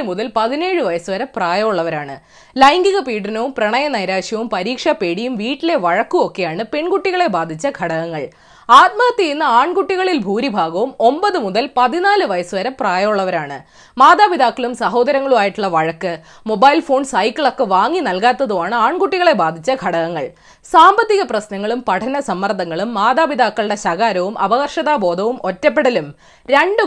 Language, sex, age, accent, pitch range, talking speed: Malayalam, female, 20-39, native, 200-320 Hz, 100 wpm